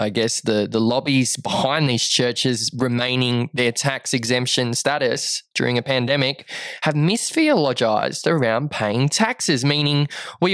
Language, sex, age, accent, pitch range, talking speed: English, male, 20-39, Australian, 135-190 Hz, 130 wpm